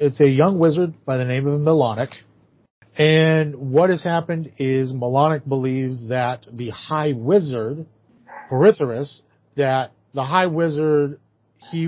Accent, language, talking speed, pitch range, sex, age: American, English, 130 wpm, 115-145 Hz, male, 40-59